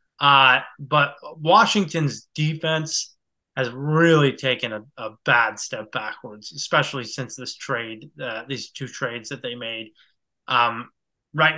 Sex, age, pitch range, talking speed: male, 20-39, 130-155 Hz, 130 wpm